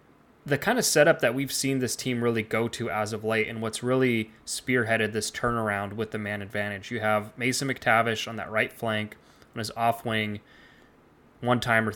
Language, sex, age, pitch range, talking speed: English, male, 20-39, 110-130 Hz, 185 wpm